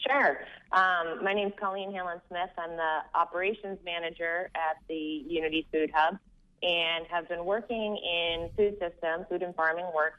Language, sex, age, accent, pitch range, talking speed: English, female, 30-49, American, 140-170 Hz, 160 wpm